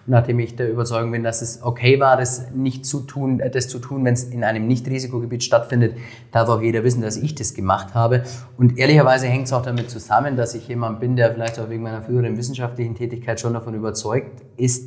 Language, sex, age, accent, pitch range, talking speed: German, male, 30-49, German, 110-125 Hz, 220 wpm